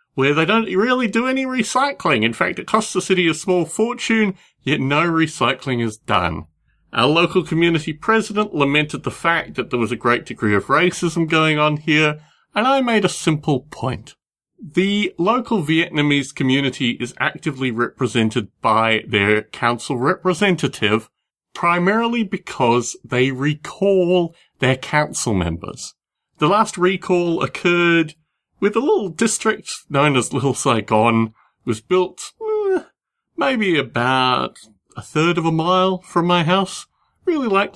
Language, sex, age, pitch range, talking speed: English, male, 30-49, 130-190 Hz, 145 wpm